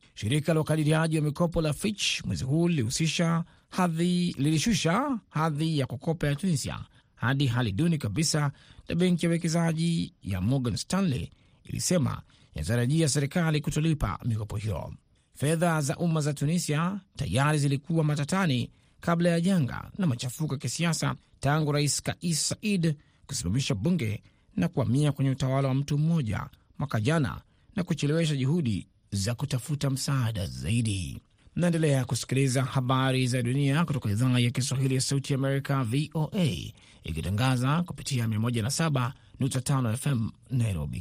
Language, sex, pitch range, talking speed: Swahili, male, 130-170 Hz, 130 wpm